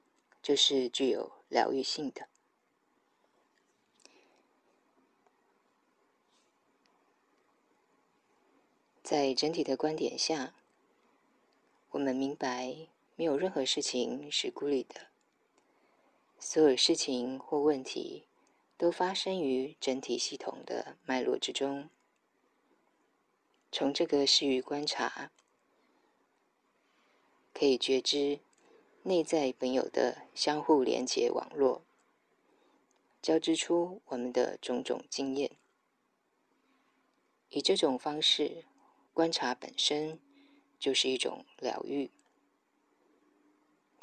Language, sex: Chinese, female